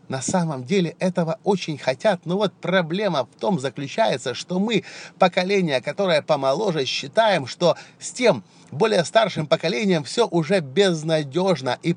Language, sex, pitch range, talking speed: Russian, male, 150-185 Hz, 140 wpm